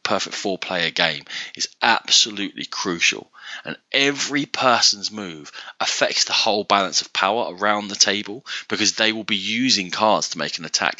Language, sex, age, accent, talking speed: English, male, 20-39, British, 165 wpm